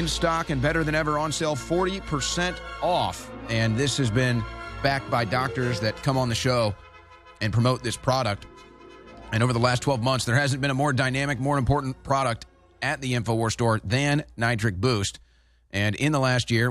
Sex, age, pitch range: male, 40-59, 110-145 Hz